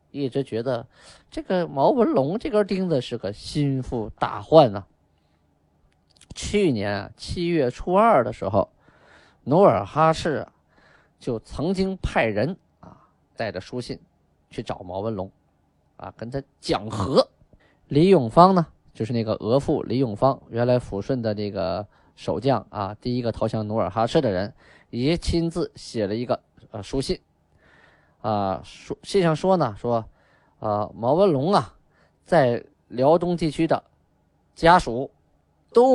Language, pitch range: Chinese, 105-165 Hz